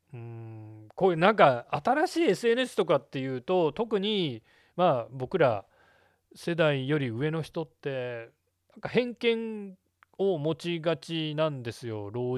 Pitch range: 130-205 Hz